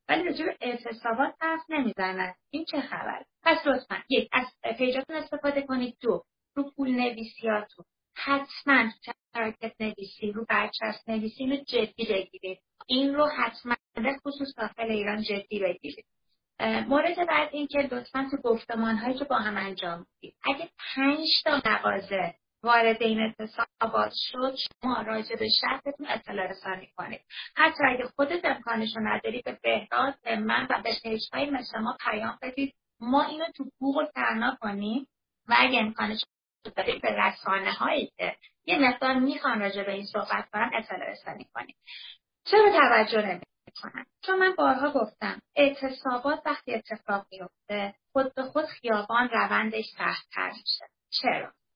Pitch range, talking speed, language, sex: 220-280 Hz, 140 wpm, Persian, female